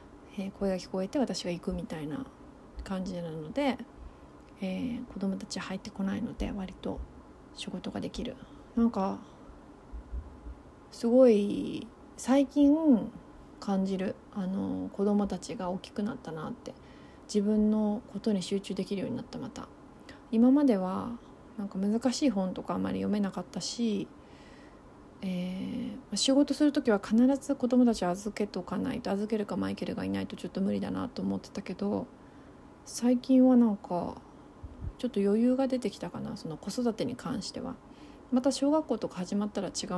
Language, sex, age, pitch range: Japanese, female, 30-49, 195-250 Hz